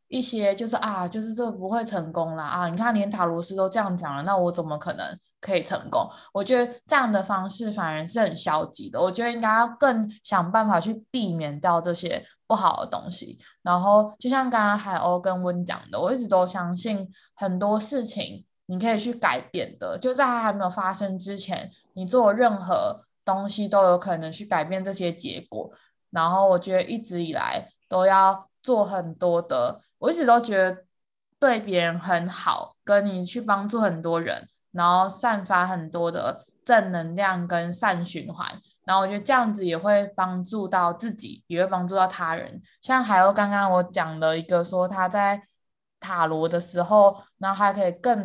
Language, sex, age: Chinese, female, 20-39